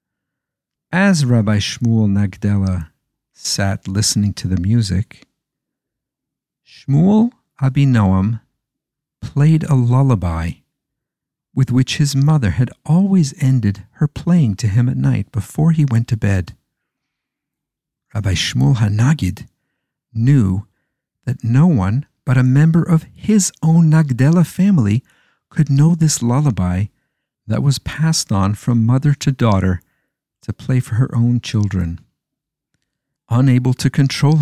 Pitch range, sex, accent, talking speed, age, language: 110-145 Hz, male, American, 120 wpm, 50-69, English